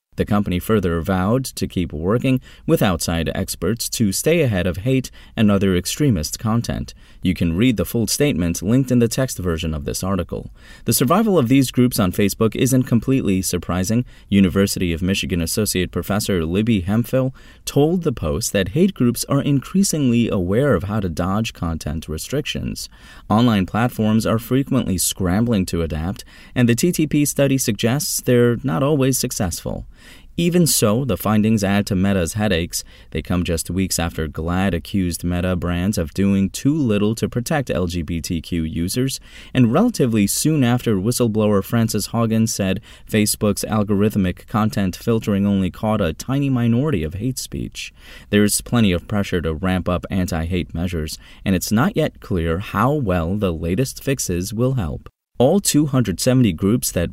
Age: 30-49